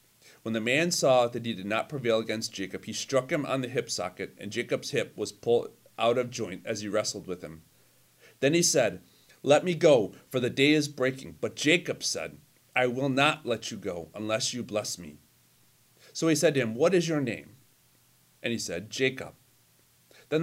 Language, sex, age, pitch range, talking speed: English, male, 40-59, 110-145 Hz, 205 wpm